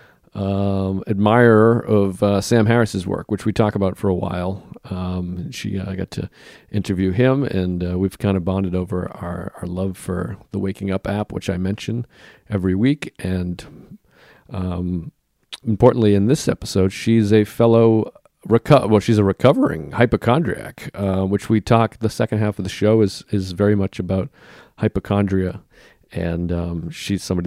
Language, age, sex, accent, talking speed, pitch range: English, 40-59, male, American, 170 wpm, 95-115 Hz